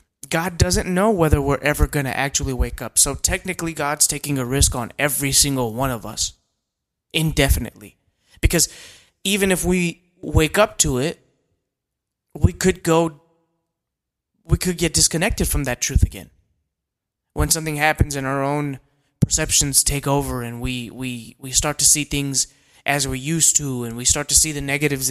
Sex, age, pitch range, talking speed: male, 20-39, 130-165 Hz, 170 wpm